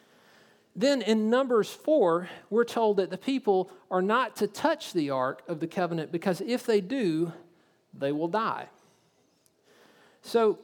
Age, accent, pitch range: 40-59, American, 145-195 Hz